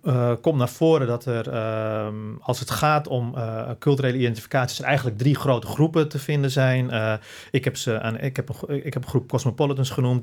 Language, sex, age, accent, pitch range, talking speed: Dutch, male, 40-59, Dutch, 115-140 Hz, 170 wpm